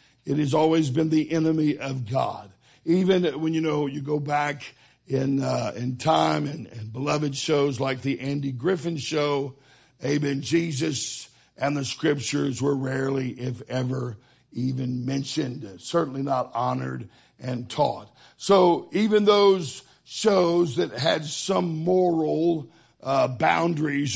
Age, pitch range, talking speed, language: 60-79, 130-175 Hz, 135 wpm, English